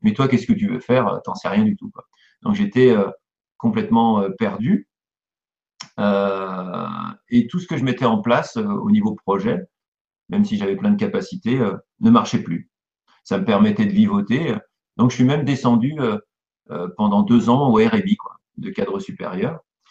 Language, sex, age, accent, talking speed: French, male, 50-69, French, 165 wpm